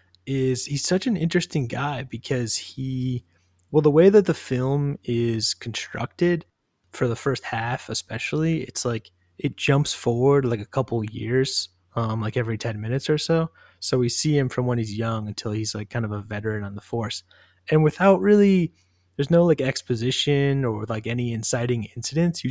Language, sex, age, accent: English, male, 20-39, American